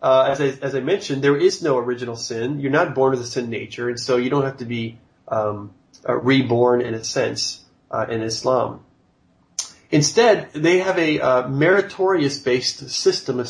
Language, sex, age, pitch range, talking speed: English, male, 30-49, 125-150 Hz, 180 wpm